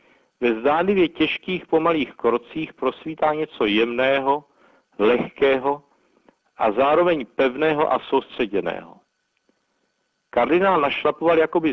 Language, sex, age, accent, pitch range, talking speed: Czech, male, 60-79, native, 120-155 Hz, 85 wpm